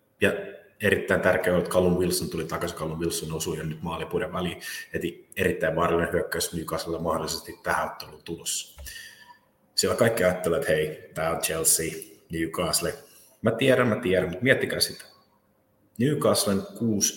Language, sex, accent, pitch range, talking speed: Finnish, male, native, 90-135 Hz, 150 wpm